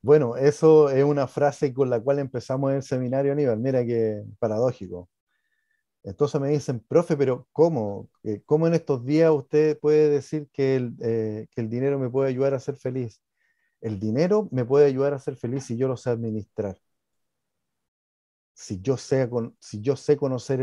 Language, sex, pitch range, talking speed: Spanish, male, 120-155 Hz, 175 wpm